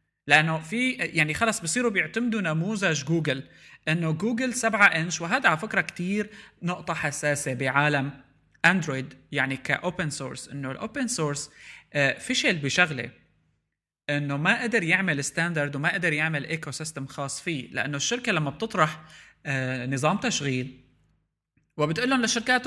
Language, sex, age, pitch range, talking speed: Arabic, male, 20-39, 145-200 Hz, 130 wpm